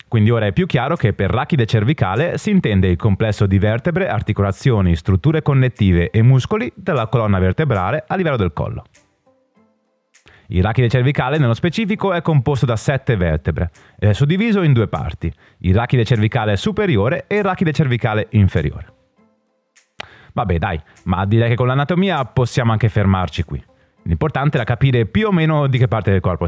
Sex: male